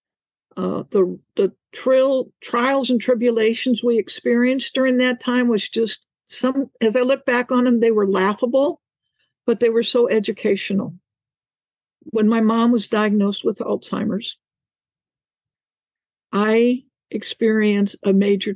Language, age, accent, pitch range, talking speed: English, 60-79, American, 200-245 Hz, 130 wpm